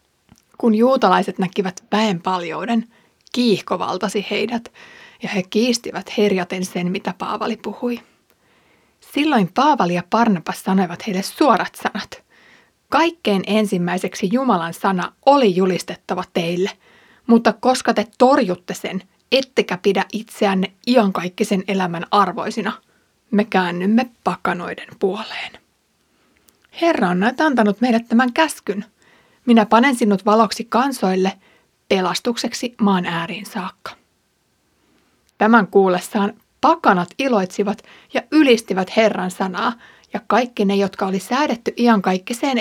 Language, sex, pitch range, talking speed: Finnish, female, 190-235 Hz, 105 wpm